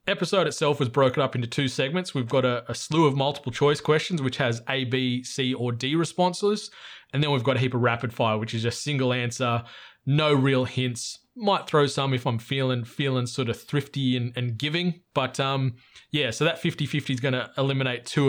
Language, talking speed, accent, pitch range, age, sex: English, 215 wpm, Australian, 125-155 Hz, 20-39, male